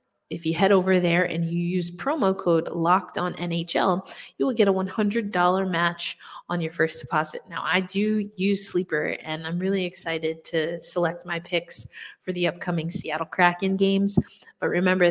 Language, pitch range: English, 165-200 Hz